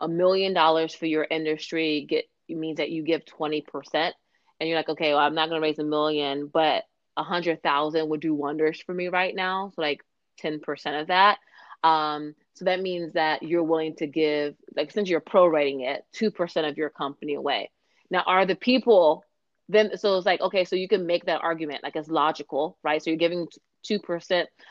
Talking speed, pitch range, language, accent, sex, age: 210 wpm, 155-180 Hz, English, American, female, 30-49